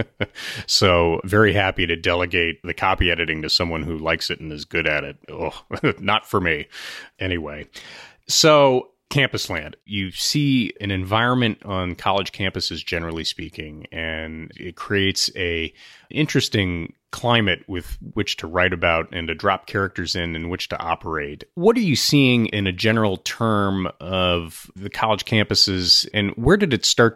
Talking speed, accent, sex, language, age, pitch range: 160 wpm, American, male, English, 30-49, 85-105 Hz